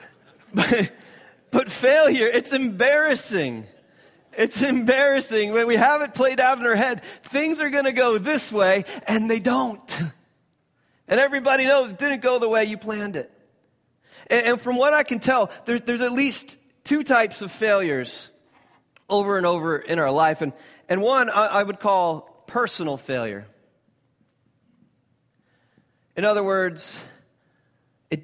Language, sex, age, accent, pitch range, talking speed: English, male, 30-49, American, 155-235 Hz, 150 wpm